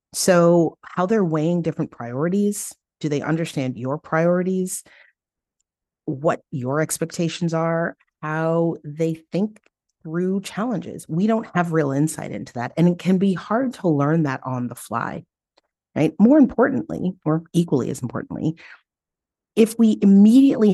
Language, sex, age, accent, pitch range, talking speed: English, female, 30-49, American, 135-180 Hz, 140 wpm